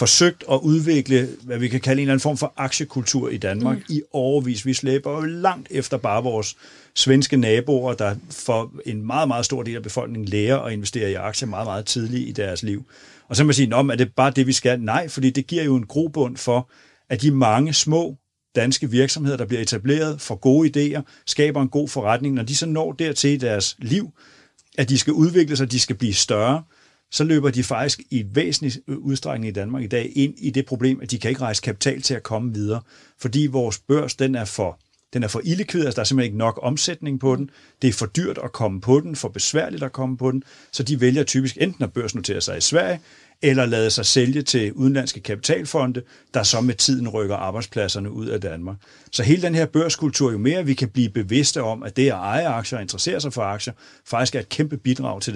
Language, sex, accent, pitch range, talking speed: Danish, male, native, 120-140 Hz, 225 wpm